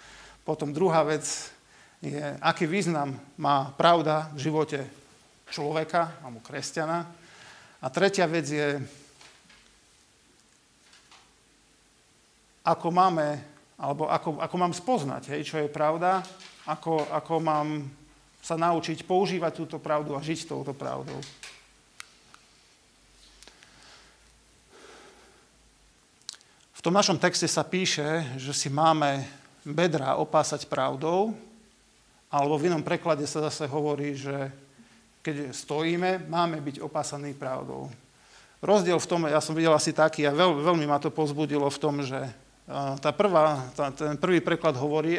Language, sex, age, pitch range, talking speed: Slovak, male, 50-69, 145-170 Hz, 120 wpm